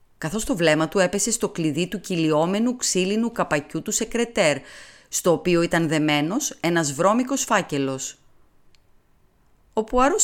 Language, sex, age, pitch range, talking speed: Greek, female, 30-49, 155-220 Hz, 130 wpm